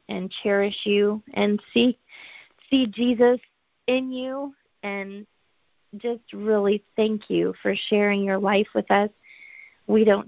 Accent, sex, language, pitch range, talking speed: American, female, English, 200-225 Hz, 130 wpm